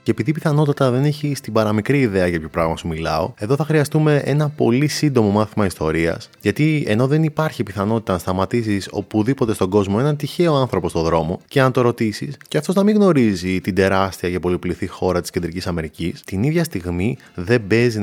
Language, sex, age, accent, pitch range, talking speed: Greek, male, 20-39, native, 95-125 Hz, 195 wpm